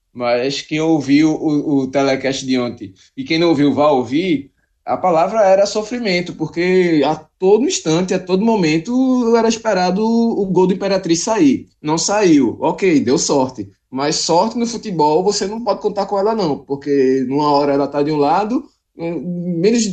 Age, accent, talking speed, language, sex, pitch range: 20-39, Brazilian, 180 wpm, Portuguese, male, 140-200 Hz